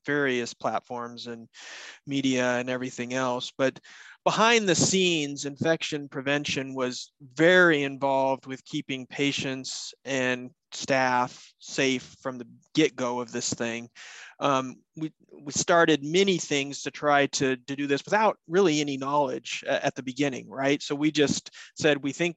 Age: 30-49